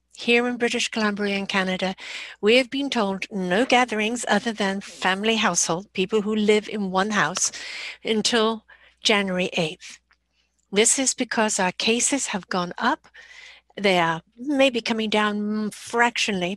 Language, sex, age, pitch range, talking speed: English, female, 60-79, 185-240 Hz, 140 wpm